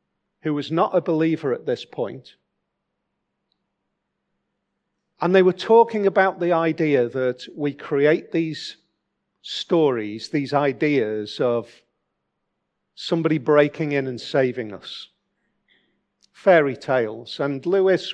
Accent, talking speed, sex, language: British, 110 wpm, male, English